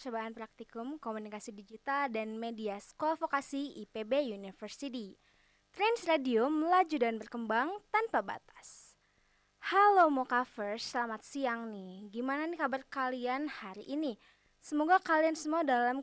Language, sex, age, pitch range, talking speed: Indonesian, female, 20-39, 225-290 Hz, 120 wpm